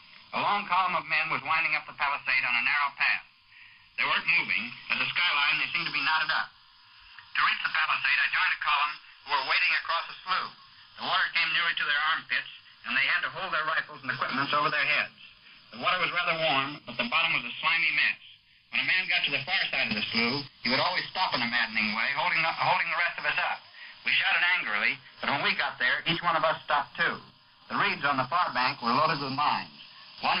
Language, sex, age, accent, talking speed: English, male, 60-79, American, 240 wpm